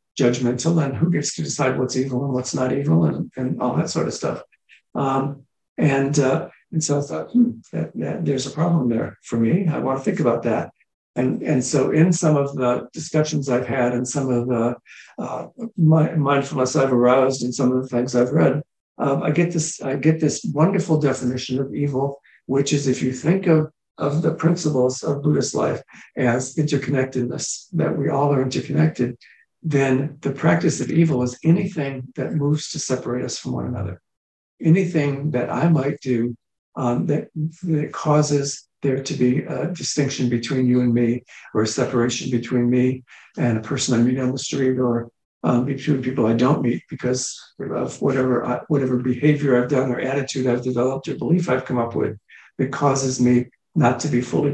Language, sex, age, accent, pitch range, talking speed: English, male, 60-79, American, 125-150 Hz, 195 wpm